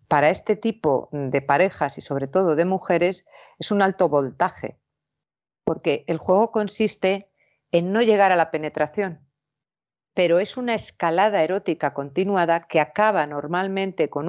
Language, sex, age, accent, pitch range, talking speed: Spanish, female, 50-69, Spanish, 155-195 Hz, 145 wpm